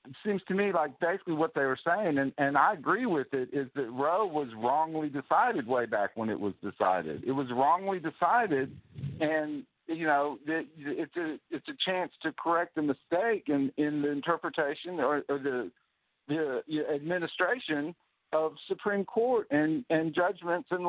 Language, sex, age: English, male, 50-69